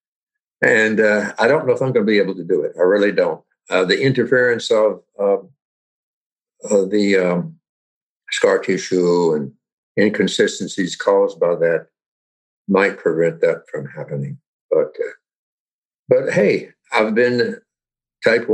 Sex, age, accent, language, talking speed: male, 60-79, American, English, 140 wpm